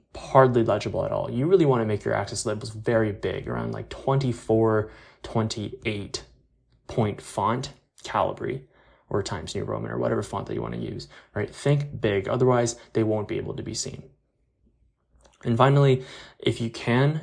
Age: 20-39